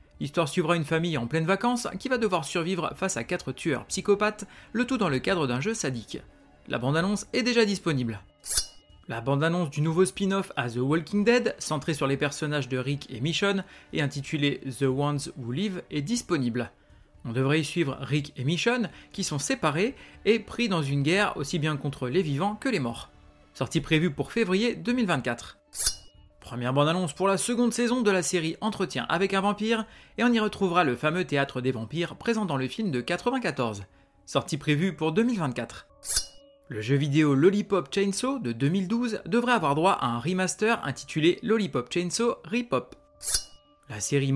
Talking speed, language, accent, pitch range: 180 wpm, French, French, 140-200 Hz